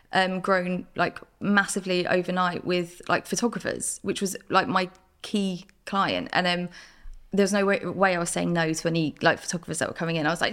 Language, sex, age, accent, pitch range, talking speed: English, female, 20-39, British, 180-220 Hz, 200 wpm